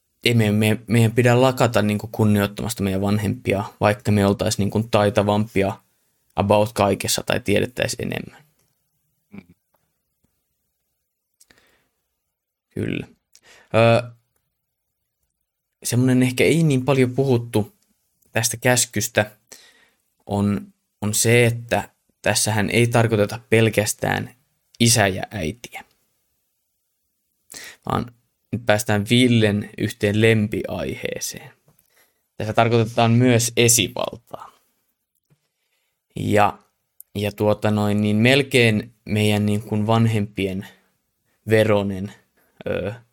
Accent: native